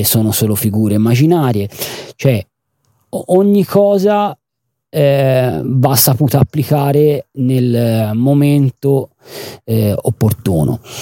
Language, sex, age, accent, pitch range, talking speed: Italian, male, 30-49, native, 105-130 Hz, 80 wpm